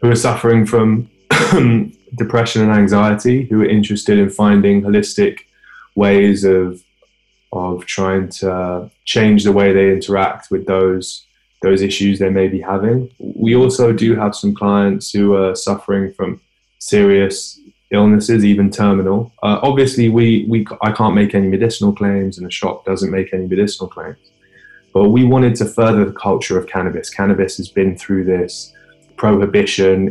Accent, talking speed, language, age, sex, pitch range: British, 155 wpm, English, 20-39, male, 95-105 Hz